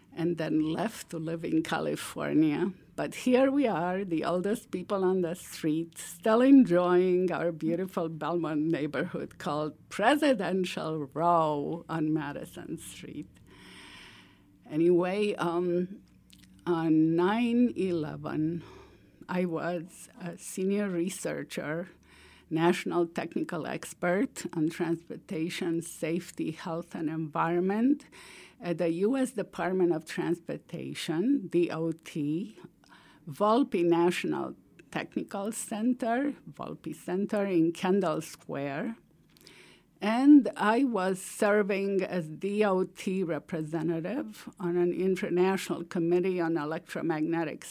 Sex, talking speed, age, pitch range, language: female, 95 wpm, 50-69, 165-210 Hz, English